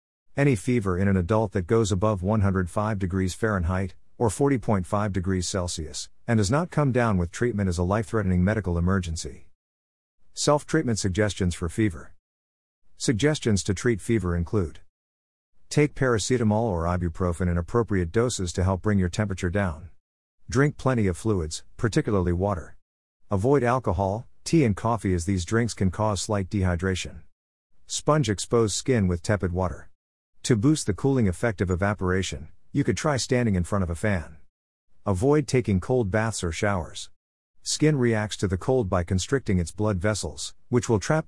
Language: English